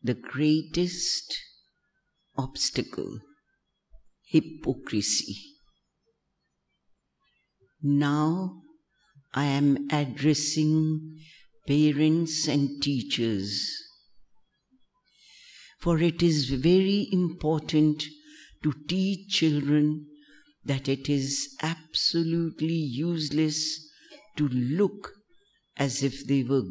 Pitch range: 140-175 Hz